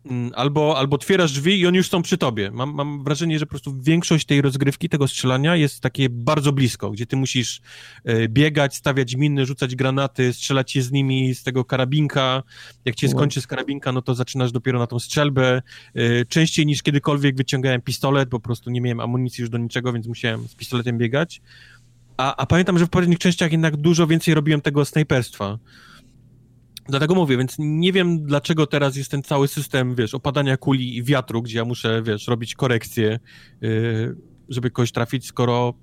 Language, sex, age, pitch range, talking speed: Polish, male, 30-49, 120-145 Hz, 185 wpm